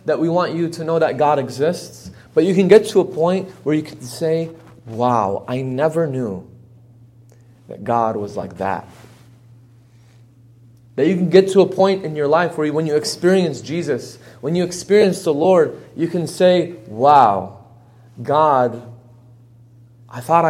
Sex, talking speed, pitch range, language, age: male, 165 wpm, 120-155 Hz, English, 30-49